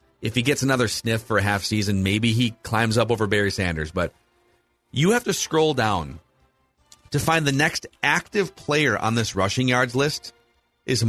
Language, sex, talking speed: English, male, 185 wpm